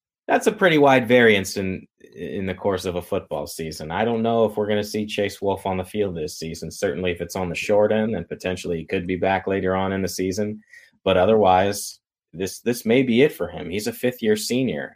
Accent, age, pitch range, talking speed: American, 30-49, 90-110 Hz, 235 wpm